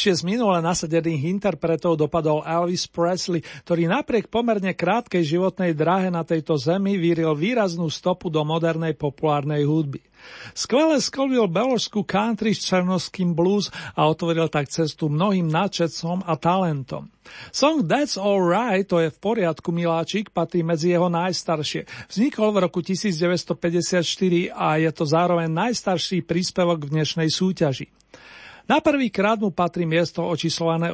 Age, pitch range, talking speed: 40-59, 160-190 Hz, 140 wpm